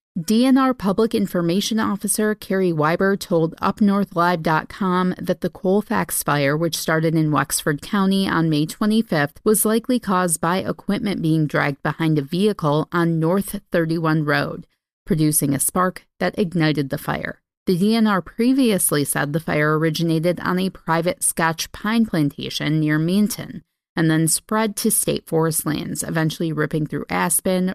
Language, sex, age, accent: English, female, 30-49, American